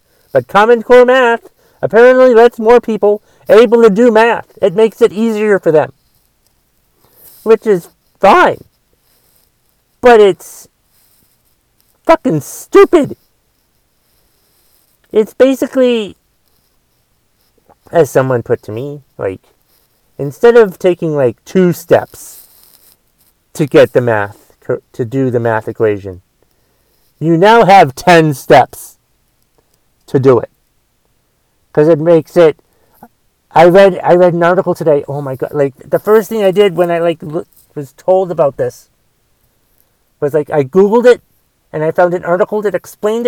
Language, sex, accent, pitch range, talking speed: English, male, American, 160-230 Hz, 135 wpm